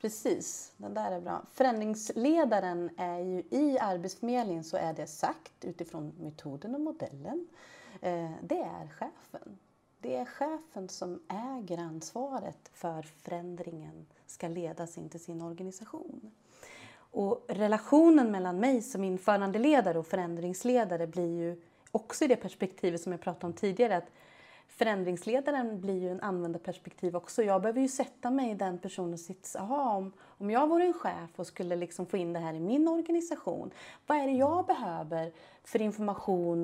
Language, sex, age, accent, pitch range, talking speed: Swedish, female, 30-49, native, 175-255 Hz, 155 wpm